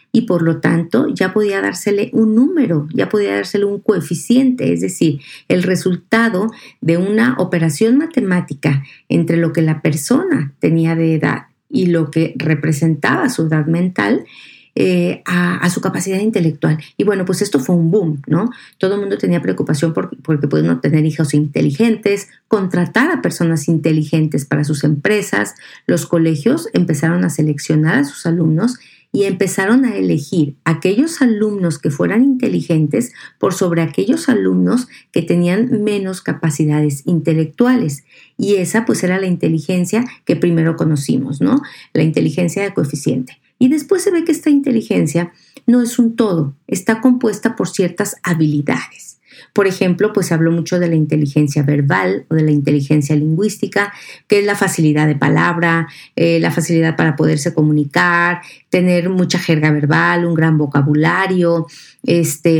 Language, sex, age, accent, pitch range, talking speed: Spanish, female, 40-59, Mexican, 155-205 Hz, 155 wpm